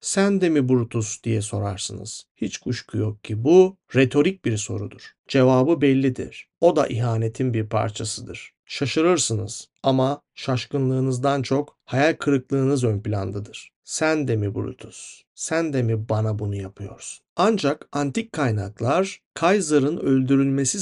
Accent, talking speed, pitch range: native, 125 wpm, 115-155 Hz